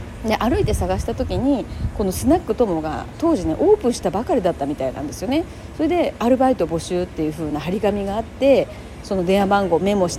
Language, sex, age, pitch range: Japanese, female, 40-59, 160-265 Hz